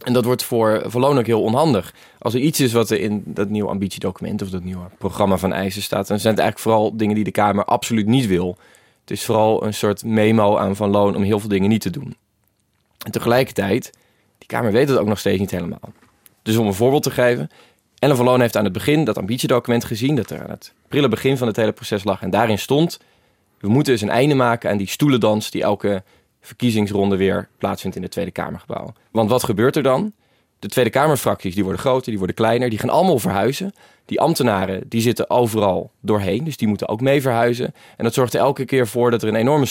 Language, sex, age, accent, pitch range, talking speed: Dutch, male, 20-39, Dutch, 100-125 Hz, 230 wpm